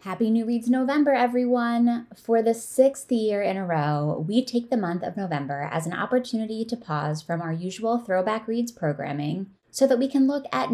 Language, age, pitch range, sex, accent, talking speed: English, 10-29, 165-235 Hz, female, American, 195 wpm